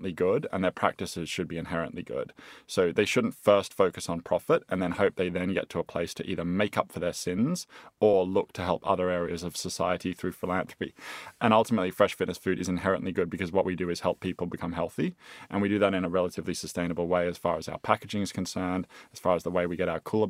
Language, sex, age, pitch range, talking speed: English, male, 20-39, 90-95 Hz, 245 wpm